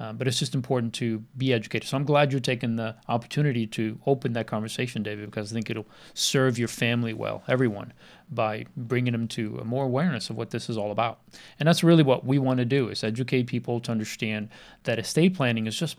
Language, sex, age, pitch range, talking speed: English, male, 40-59, 115-145 Hz, 225 wpm